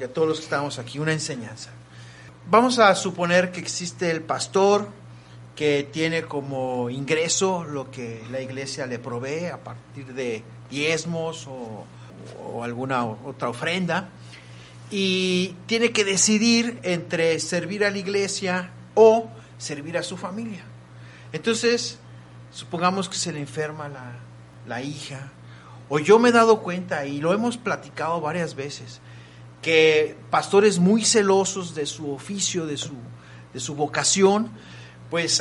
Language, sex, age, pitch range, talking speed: Spanish, male, 40-59, 125-185 Hz, 135 wpm